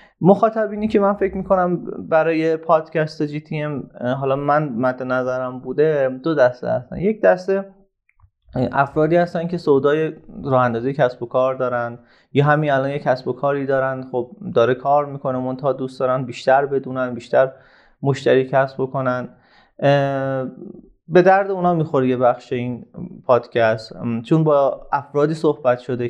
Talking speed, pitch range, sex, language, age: 145 wpm, 130-170 Hz, male, Persian, 30-49